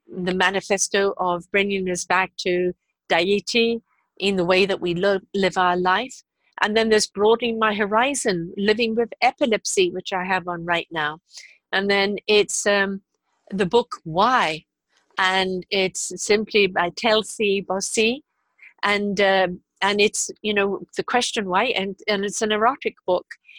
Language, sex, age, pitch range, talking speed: English, female, 50-69, 190-230 Hz, 155 wpm